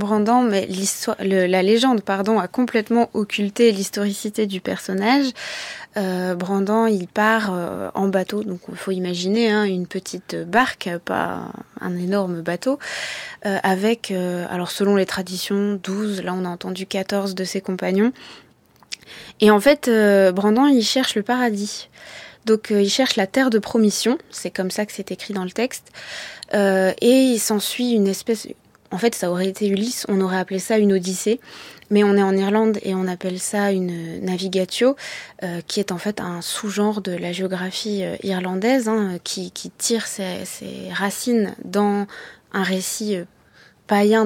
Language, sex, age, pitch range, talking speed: French, female, 20-39, 190-225 Hz, 170 wpm